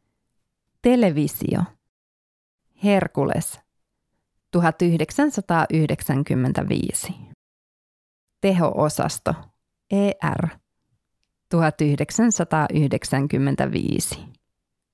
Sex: female